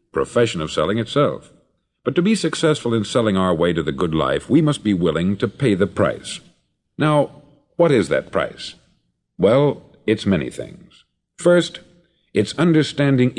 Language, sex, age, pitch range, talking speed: English, male, 50-69, 95-140 Hz, 160 wpm